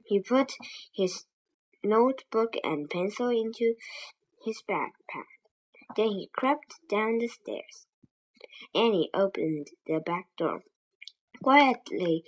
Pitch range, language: 185-245 Hz, Chinese